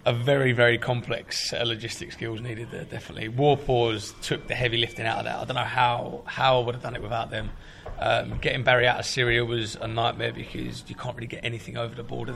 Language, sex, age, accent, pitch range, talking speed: English, male, 20-39, British, 115-125 Hz, 235 wpm